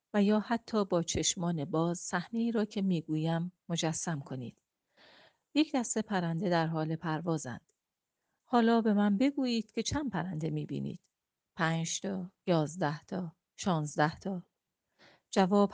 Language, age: Persian, 40-59